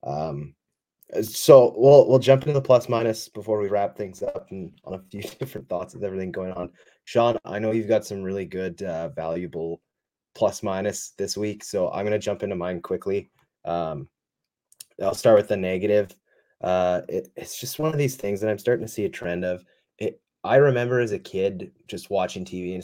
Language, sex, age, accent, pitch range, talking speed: English, male, 20-39, American, 90-110 Hz, 200 wpm